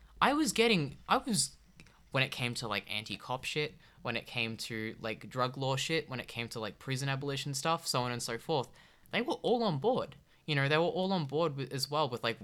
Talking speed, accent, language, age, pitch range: 235 wpm, Australian, English, 10-29, 115-155 Hz